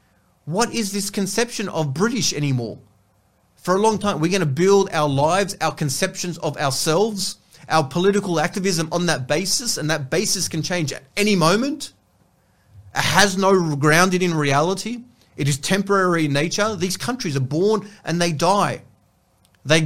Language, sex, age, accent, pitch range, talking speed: English, male, 30-49, Australian, 130-185 Hz, 165 wpm